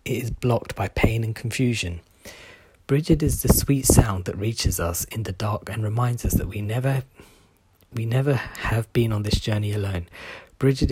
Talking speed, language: 180 wpm, English